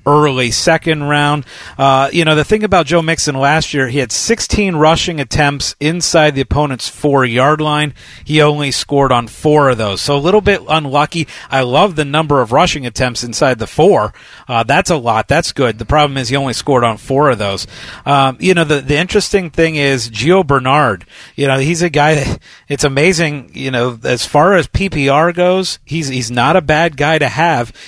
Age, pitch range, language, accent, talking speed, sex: 40-59, 130-165 Hz, English, American, 205 wpm, male